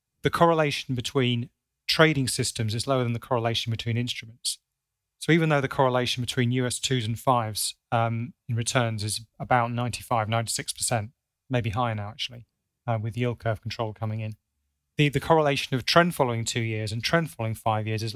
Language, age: English, 30-49